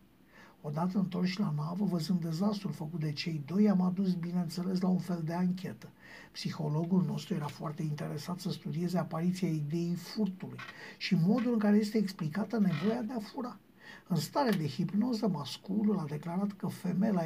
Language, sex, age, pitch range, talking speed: Romanian, male, 50-69, 170-210 Hz, 165 wpm